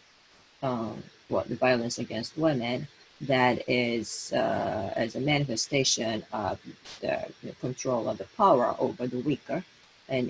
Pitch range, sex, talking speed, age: 115-135 Hz, female, 140 wpm, 40-59